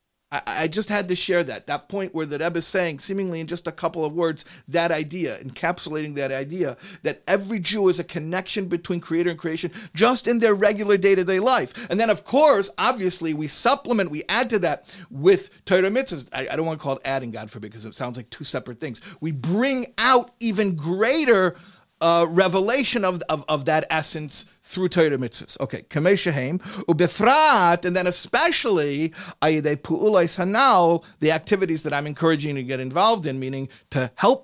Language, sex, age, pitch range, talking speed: English, male, 40-59, 145-190 Hz, 185 wpm